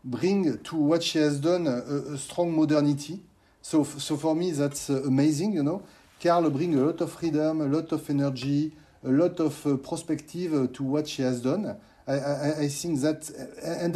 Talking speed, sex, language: 200 wpm, male, English